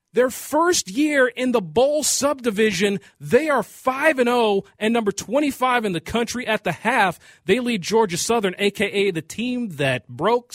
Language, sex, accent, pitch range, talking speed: English, male, American, 170-215 Hz, 165 wpm